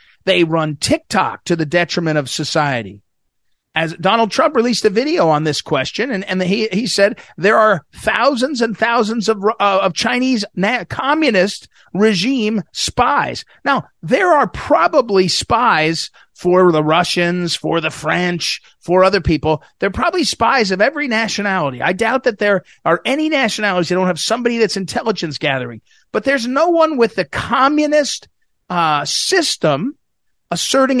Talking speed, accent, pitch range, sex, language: 155 wpm, American, 160-235 Hz, male, English